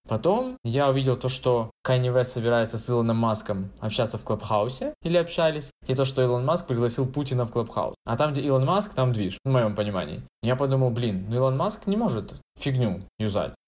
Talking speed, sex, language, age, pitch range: 195 wpm, male, Russian, 20-39, 115-135 Hz